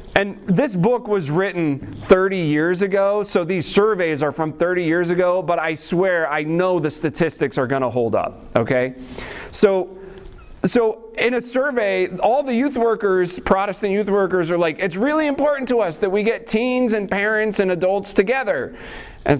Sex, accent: male, American